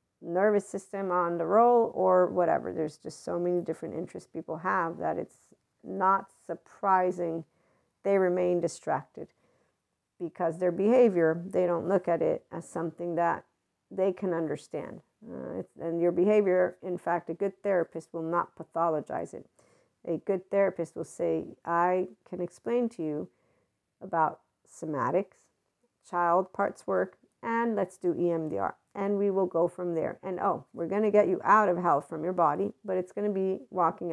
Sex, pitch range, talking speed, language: female, 170-195 Hz, 165 wpm, English